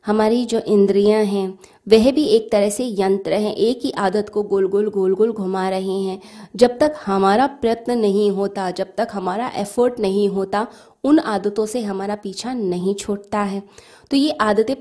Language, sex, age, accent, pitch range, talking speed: Hindi, female, 20-39, native, 195-225 Hz, 180 wpm